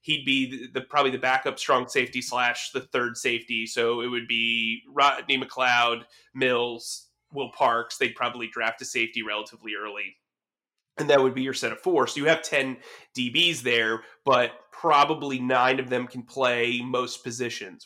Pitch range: 125-170 Hz